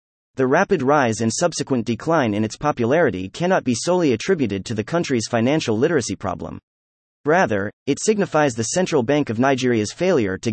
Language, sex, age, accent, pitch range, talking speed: English, male, 30-49, American, 110-155 Hz, 165 wpm